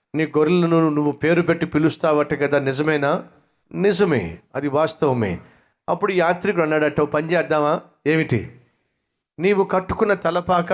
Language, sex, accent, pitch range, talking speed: Telugu, male, native, 140-170 Hz, 110 wpm